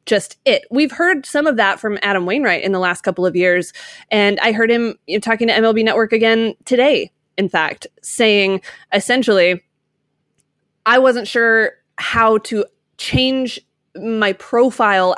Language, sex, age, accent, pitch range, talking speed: English, female, 20-39, American, 190-250 Hz, 150 wpm